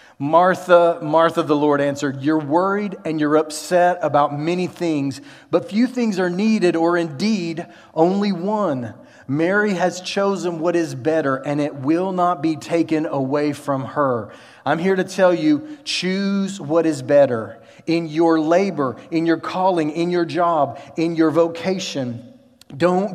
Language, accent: English, American